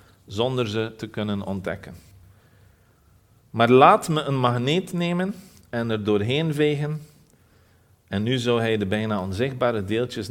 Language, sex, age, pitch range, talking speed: Dutch, male, 40-59, 100-145 Hz, 135 wpm